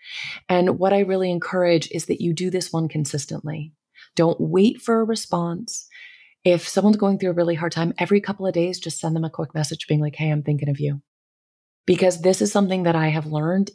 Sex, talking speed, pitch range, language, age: female, 220 wpm, 160-195 Hz, English, 30-49